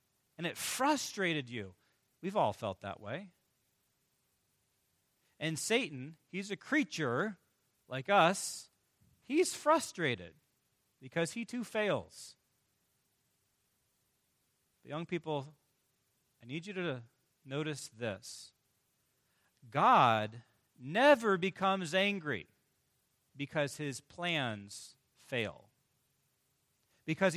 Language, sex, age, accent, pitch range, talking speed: English, male, 40-59, American, 130-190 Hz, 90 wpm